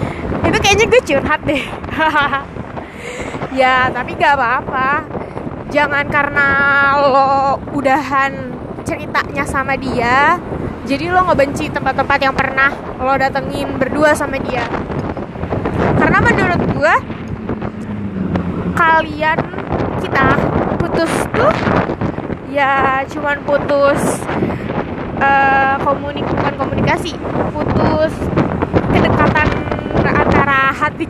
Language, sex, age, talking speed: Indonesian, female, 20-39, 85 wpm